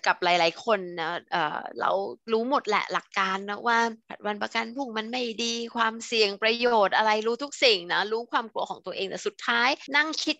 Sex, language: female, Thai